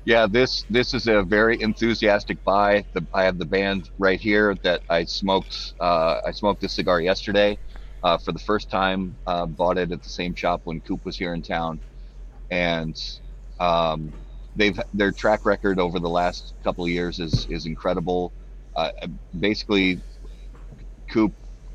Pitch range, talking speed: 85-105 Hz, 165 wpm